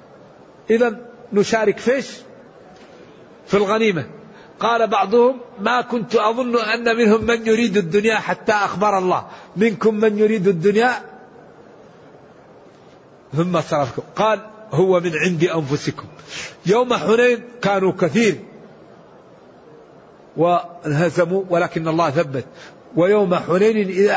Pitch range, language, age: 190-235 Hz, Arabic, 50-69